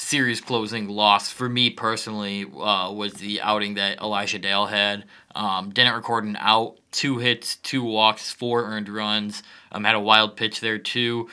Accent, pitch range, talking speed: American, 105-120 Hz, 175 wpm